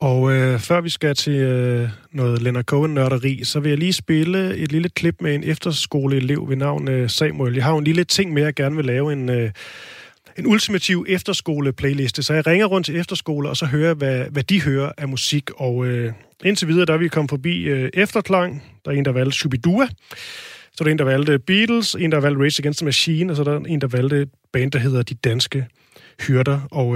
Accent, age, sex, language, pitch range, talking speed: native, 30-49, male, Danish, 130-160 Hz, 230 wpm